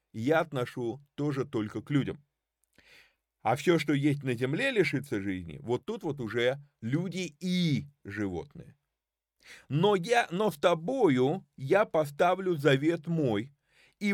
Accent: native